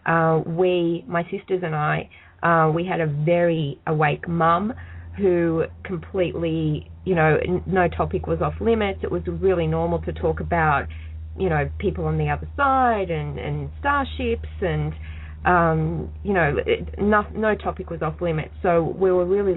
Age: 20-39